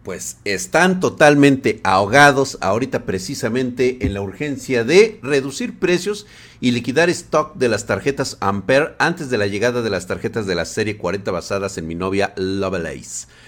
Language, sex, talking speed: Spanish, male, 155 wpm